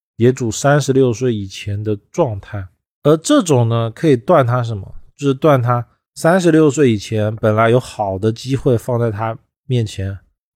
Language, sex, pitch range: Chinese, male, 105-140 Hz